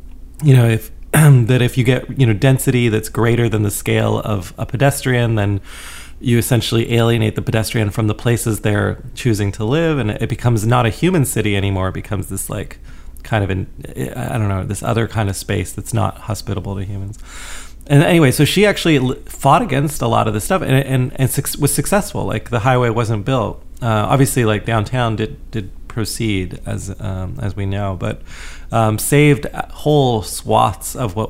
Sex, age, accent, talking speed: male, 30-49, American, 195 wpm